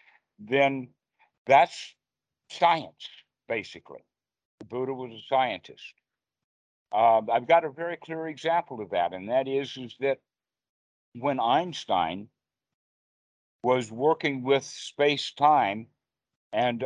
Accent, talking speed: American, 110 wpm